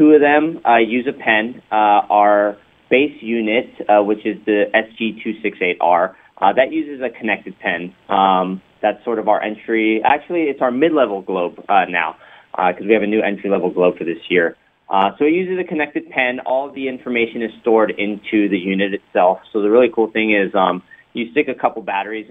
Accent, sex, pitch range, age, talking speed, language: American, male, 100-120 Hz, 30-49, 200 wpm, English